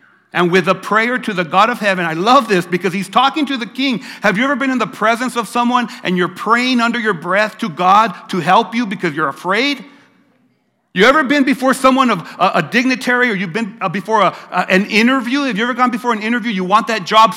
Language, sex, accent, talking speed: English, male, American, 230 wpm